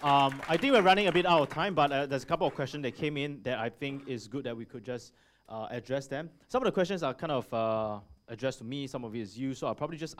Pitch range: 120-150 Hz